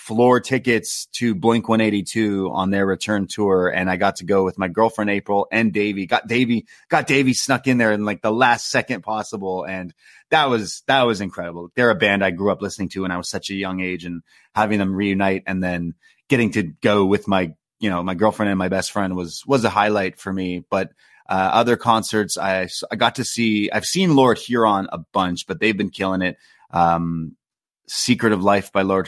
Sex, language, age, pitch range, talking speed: male, English, 30-49, 90-110 Hz, 215 wpm